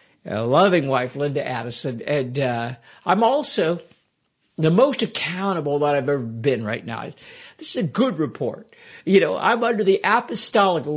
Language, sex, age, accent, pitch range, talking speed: English, male, 60-79, American, 135-195 Hz, 160 wpm